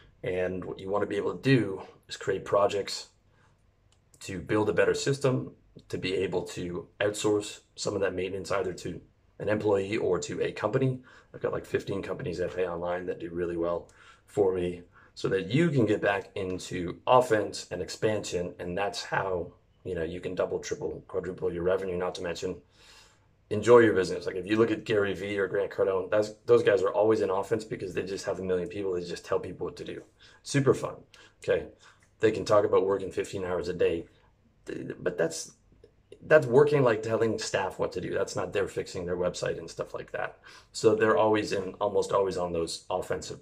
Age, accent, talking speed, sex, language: 30-49, American, 205 wpm, male, English